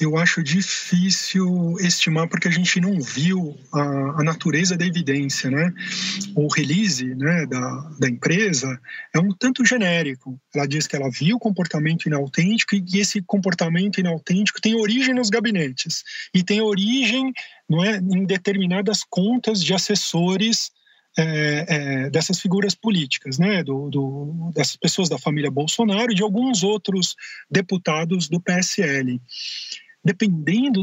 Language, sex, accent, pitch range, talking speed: Portuguese, male, Brazilian, 155-200 Hz, 140 wpm